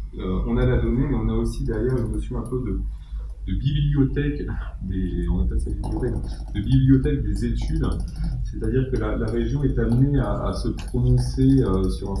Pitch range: 90-125 Hz